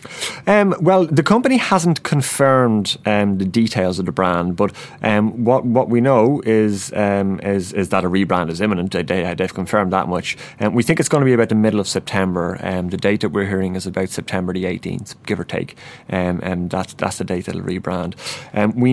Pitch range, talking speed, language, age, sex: 95-110 Hz, 220 wpm, English, 30-49, male